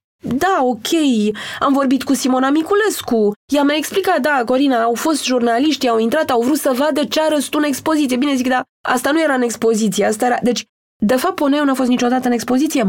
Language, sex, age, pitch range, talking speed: Romanian, female, 20-39, 220-280 Hz, 215 wpm